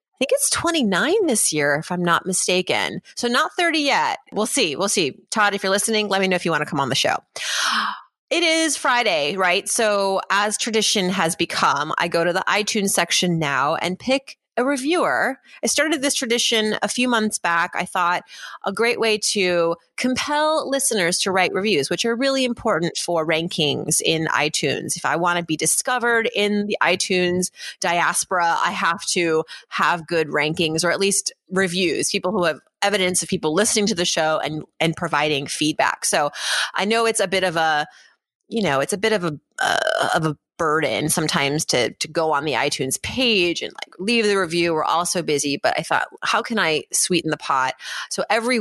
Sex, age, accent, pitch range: female, 30-49, American, 160-220 Hz